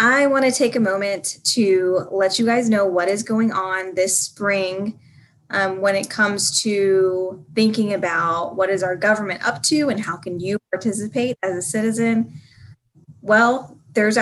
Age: 10-29